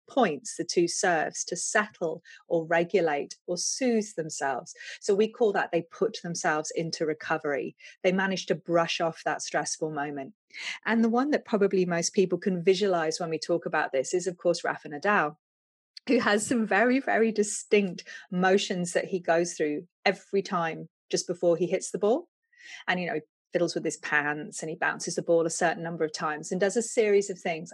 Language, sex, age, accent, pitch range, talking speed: English, female, 30-49, British, 165-205 Hz, 195 wpm